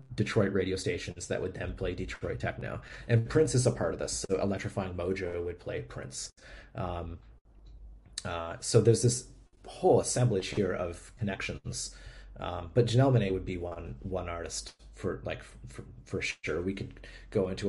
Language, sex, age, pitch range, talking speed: English, male, 30-49, 90-115 Hz, 170 wpm